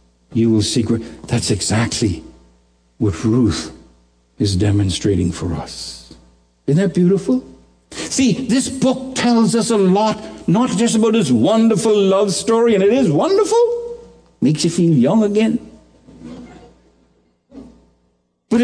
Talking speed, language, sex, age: 120 wpm, English, male, 60-79